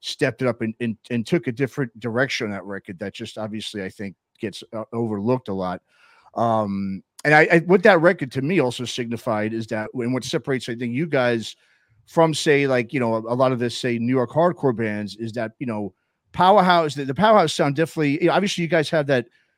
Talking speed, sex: 225 wpm, male